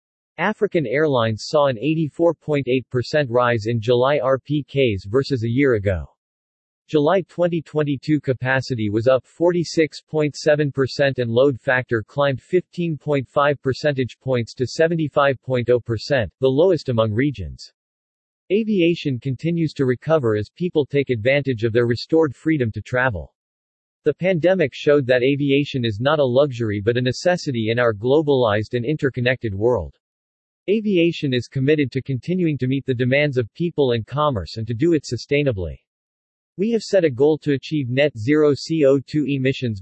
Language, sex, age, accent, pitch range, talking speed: English, male, 40-59, American, 120-150 Hz, 140 wpm